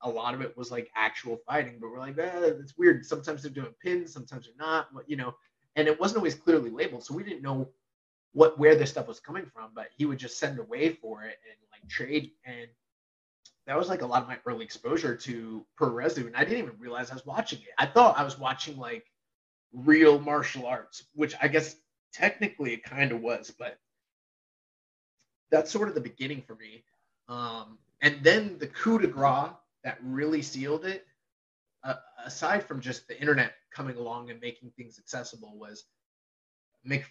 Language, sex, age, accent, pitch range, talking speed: English, male, 20-39, American, 120-150 Hz, 195 wpm